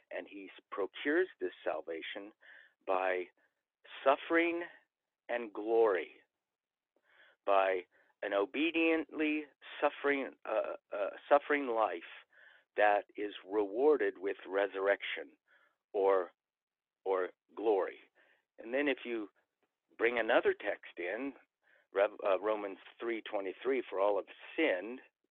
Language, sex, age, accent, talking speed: English, male, 50-69, American, 100 wpm